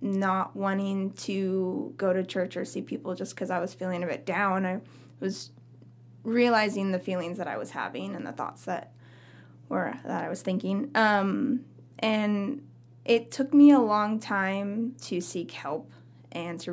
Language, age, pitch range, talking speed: English, 10-29, 185-255 Hz, 170 wpm